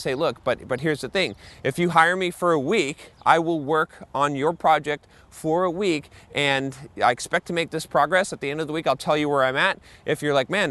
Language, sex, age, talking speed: English, male, 30-49, 260 wpm